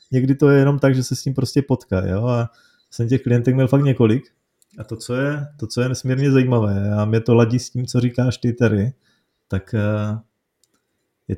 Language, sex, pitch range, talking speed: Czech, male, 110-135 Hz, 210 wpm